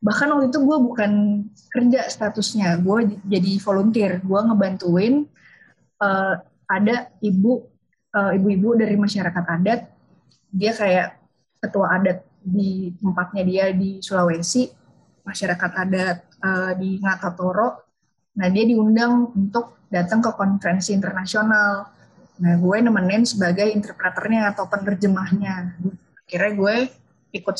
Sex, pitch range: female, 190-225 Hz